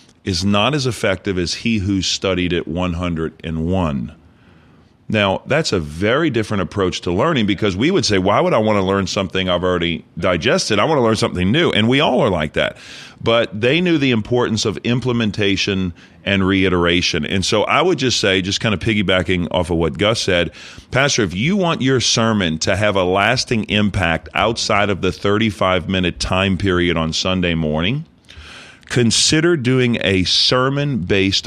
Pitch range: 90-115 Hz